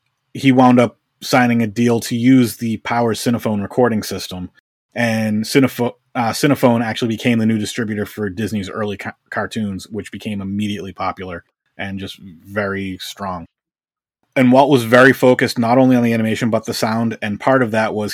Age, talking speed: 30-49, 170 wpm